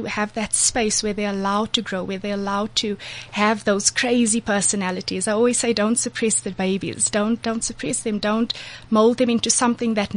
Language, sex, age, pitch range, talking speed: English, female, 20-39, 200-235 Hz, 195 wpm